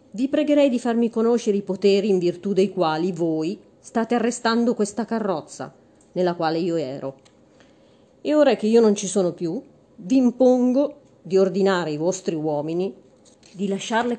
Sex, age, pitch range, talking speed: female, 30-49, 170-235 Hz, 155 wpm